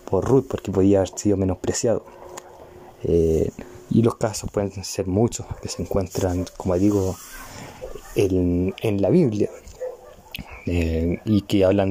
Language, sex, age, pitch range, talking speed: Spanish, male, 20-39, 95-105 Hz, 135 wpm